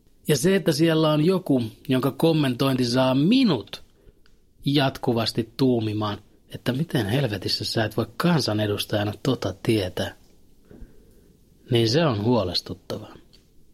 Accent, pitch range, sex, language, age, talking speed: native, 115-145 Hz, male, Finnish, 30-49, 110 wpm